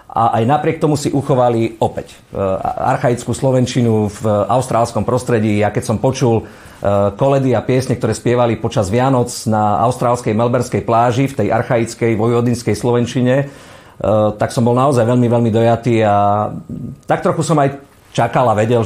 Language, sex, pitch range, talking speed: Slovak, male, 105-125 Hz, 155 wpm